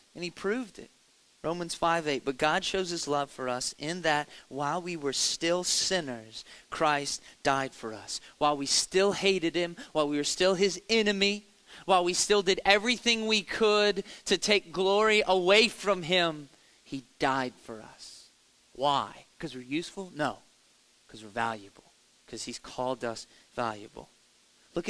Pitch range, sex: 130-175 Hz, male